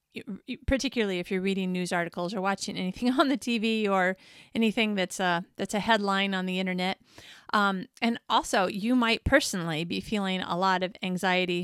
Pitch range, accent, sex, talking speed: 190-230 Hz, American, female, 170 wpm